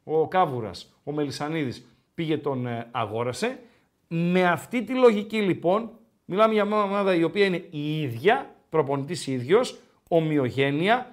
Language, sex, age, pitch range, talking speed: Greek, male, 50-69, 130-180 Hz, 130 wpm